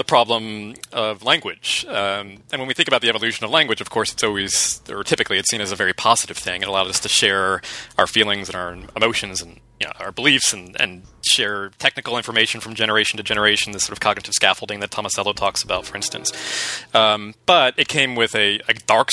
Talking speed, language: 220 wpm, English